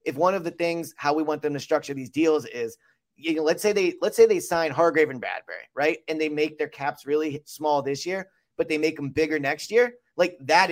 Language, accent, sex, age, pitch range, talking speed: English, American, male, 30-49, 145-180 Hz, 250 wpm